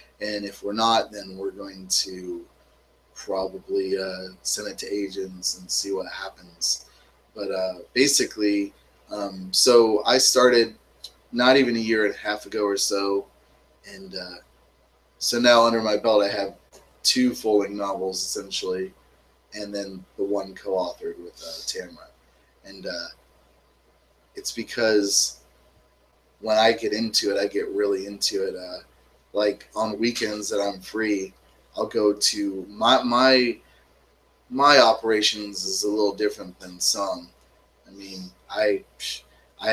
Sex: male